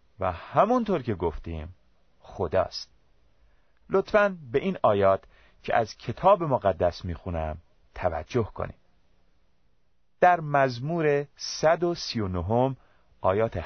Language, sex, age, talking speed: Persian, male, 30-49, 95 wpm